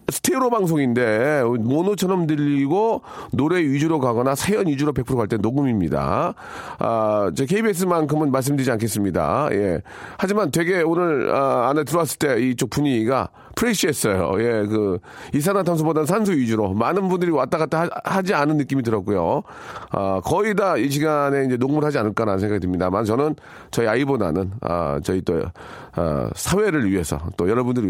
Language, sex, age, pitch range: Korean, male, 40-59, 120-170 Hz